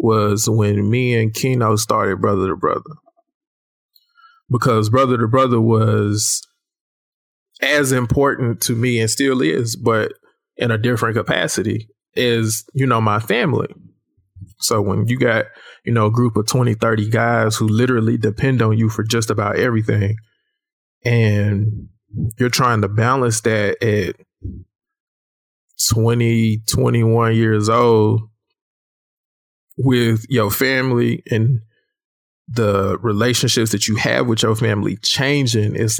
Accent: American